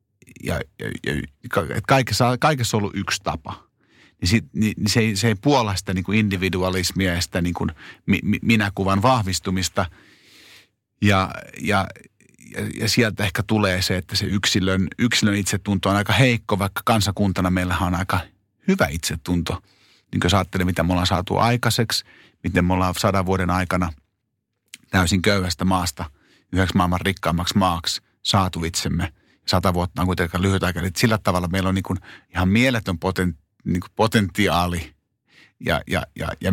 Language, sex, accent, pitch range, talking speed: Finnish, male, native, 90-110 Hz, 140 wpm